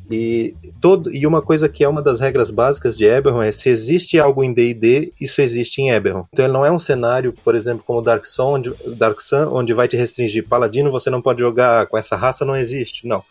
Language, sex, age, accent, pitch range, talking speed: Portuguese, male, 20-39, Brazilian, 115-145 Hz, 235 wpm